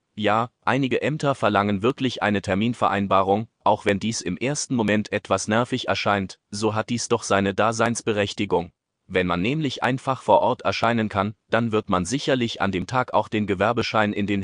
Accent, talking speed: German, 175 wpm